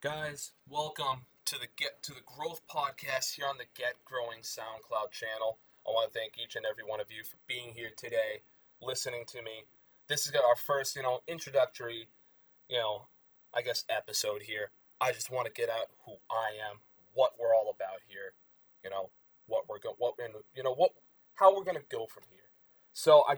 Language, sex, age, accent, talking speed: English, male, 20-39, American, 200 wpm